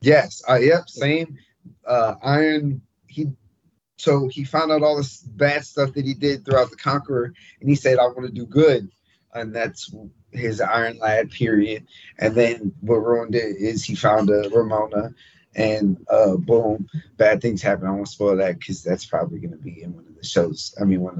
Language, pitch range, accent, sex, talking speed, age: English, 110-140 Hz, American, male, 195 wpm, 20-39